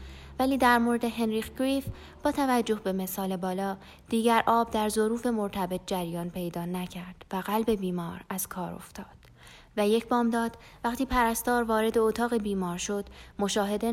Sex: female